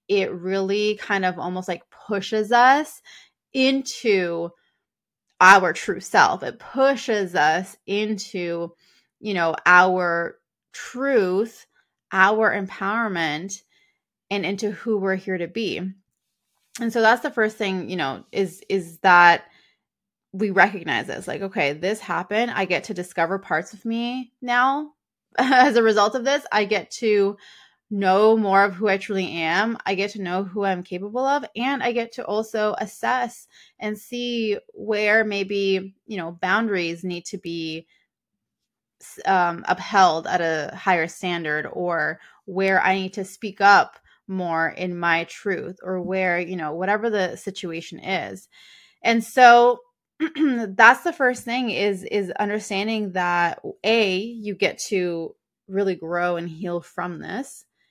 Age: 20-39